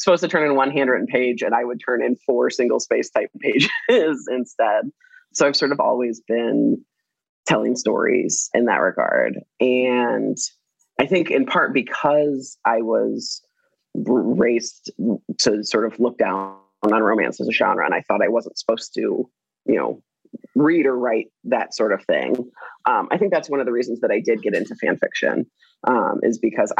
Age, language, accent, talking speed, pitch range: 30-49, English, American, 185 wpm, 120-155 Hz